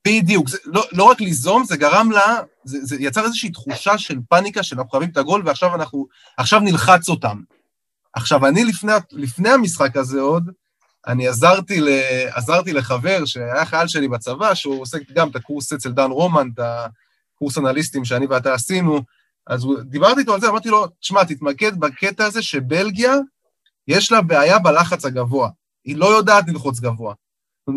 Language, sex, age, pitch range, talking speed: Hebrew, male, 20-39, 140-200 Hz, 170 wpm